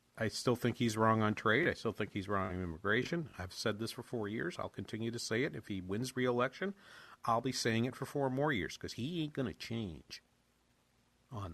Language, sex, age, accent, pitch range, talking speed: English, male, 50-69, American, 105-130 Hz, 230 wpm